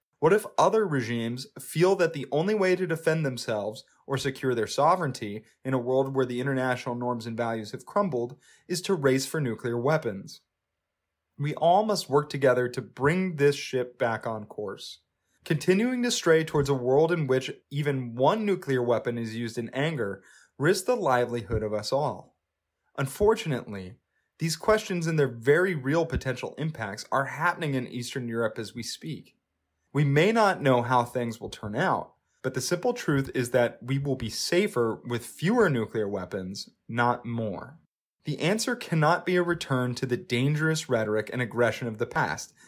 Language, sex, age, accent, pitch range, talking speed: English, male, 20-39, American, 120-155 Hz, 175 wpm